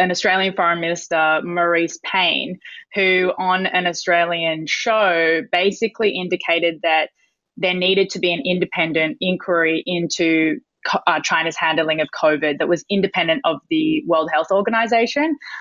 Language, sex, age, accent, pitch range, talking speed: English, female, 20-39, Australian, 165-195 Hz, 135 wpm